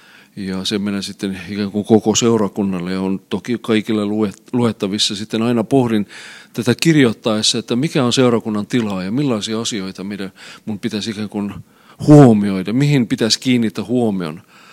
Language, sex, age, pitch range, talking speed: Finnish, male, 40-59, 105-125 Hz, 140 wpm